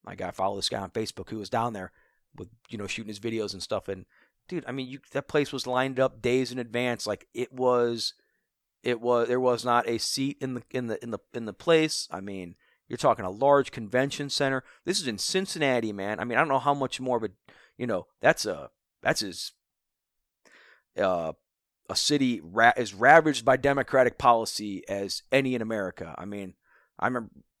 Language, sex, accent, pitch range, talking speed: English, male, American, 110-140 Hz, 210 wpm